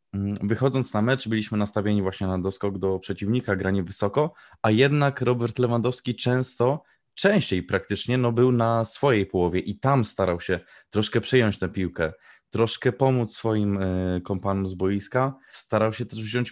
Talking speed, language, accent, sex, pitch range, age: 150 wpm, Polish, native, male, 100-120 Hz, 20-39